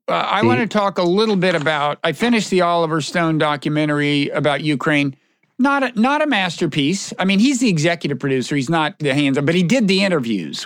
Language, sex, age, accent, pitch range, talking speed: English, male, 50-69, American, 145-195 Hz, 205 wpm